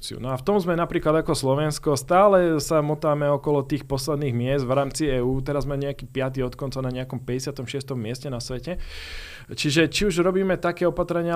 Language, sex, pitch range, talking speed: Slovak, male, 125-160 Hz, 190 wpm